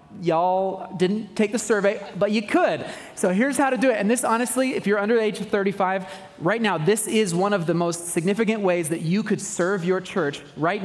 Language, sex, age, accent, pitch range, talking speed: English, male, 30-49, American, 160-205 Hz, 215 wpm